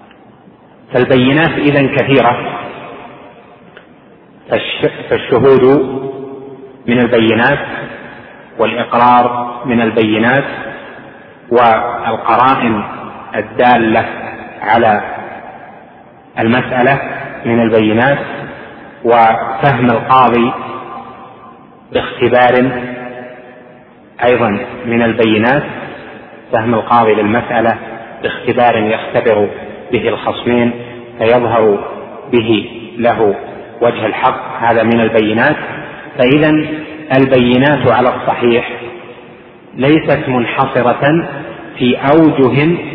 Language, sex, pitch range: Arabic, male, 120-135 Hz